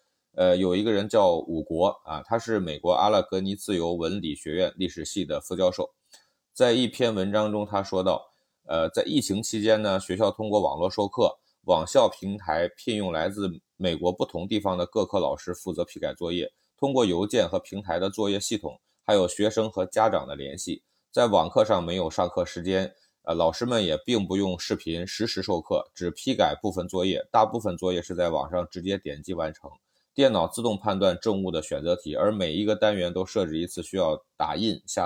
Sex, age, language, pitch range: male, 20-39, Chinese, 85-105 Hz